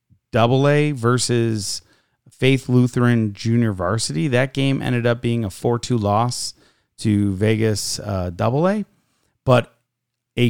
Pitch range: 110-130 Hz